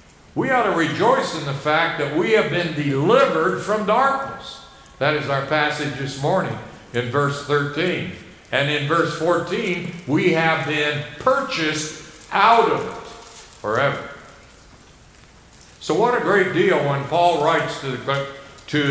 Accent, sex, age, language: American, male, 60-79, Japanese